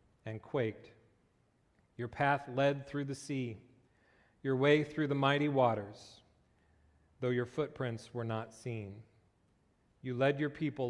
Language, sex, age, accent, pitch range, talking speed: English, male, 40-59, American, 115-145 Hz, 130 wpm